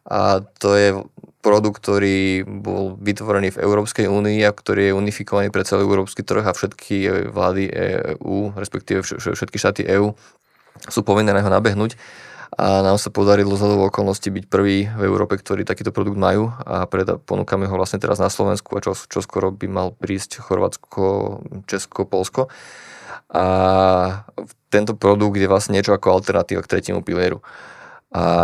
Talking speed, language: 155 wpm, Slovak